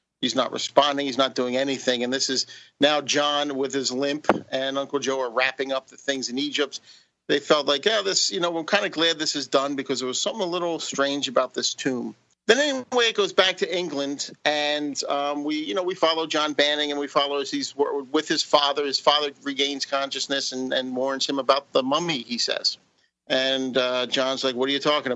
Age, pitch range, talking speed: 50-69, 130-155 Hz, 225 wpm